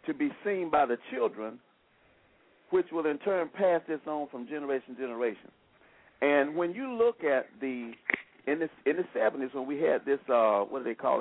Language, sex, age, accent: English, male, 50-69, American